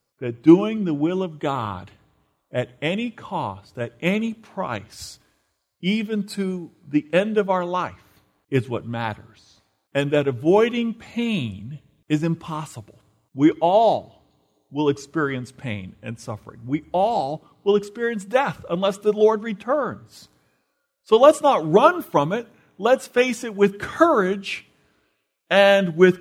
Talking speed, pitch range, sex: 130 wpm, 140-225 Hz, male